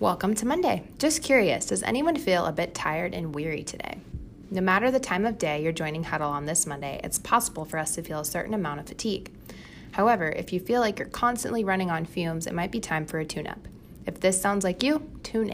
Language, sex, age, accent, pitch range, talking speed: English, female, 20-39, American, 160-205 Hz, 230 wpm